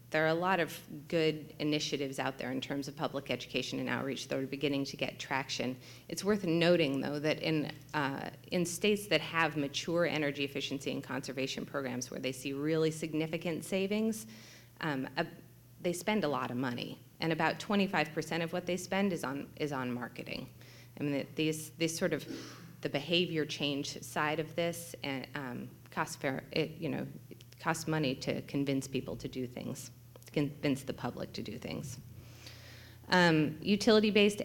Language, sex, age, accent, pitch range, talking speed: English, female, 30-49, American, 140-165 Hz, 175 wpm